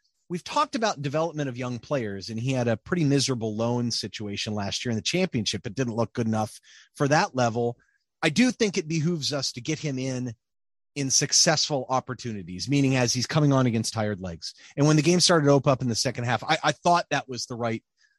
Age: 30-49